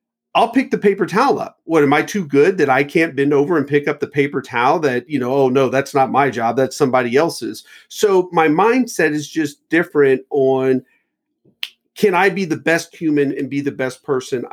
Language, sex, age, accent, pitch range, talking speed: English, male, 40-59, American, 135-170 Hz, 215 wpm